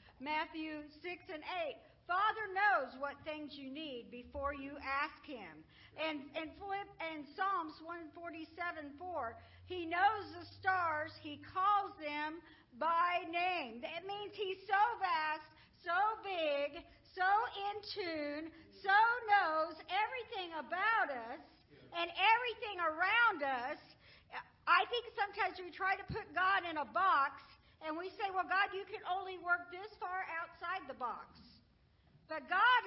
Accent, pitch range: American, 315-400 Hz